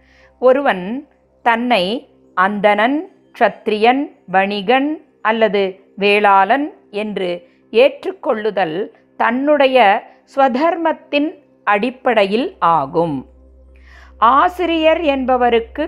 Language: Tamil